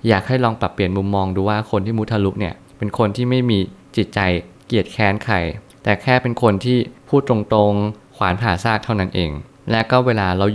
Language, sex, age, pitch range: Thai, male, 20-39, 100-125 Hz